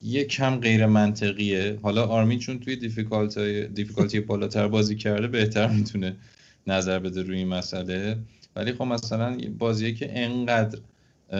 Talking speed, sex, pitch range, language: 140 wpm, male, 95-115 Hz, Persian